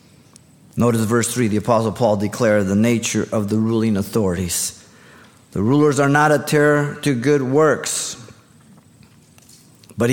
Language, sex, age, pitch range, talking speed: English, male, 50-69, 110-140 Hz, 135 wpm